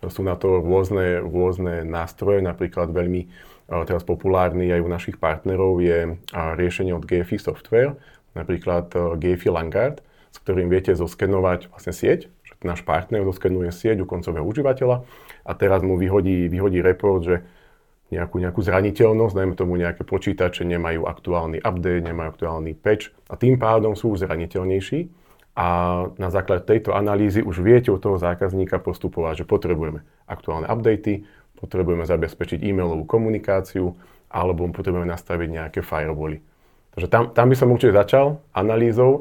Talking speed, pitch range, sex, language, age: 145 wpm, 90-100 Hz, male, Slovak, 30-49